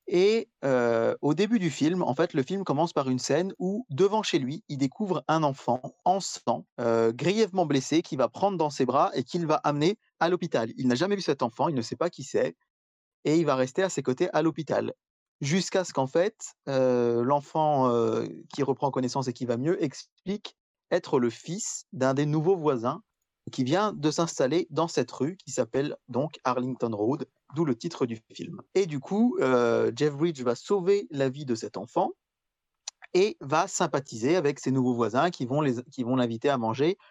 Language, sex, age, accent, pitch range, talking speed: French, male, 30-49, French, 125-175 Hz, 205 wpm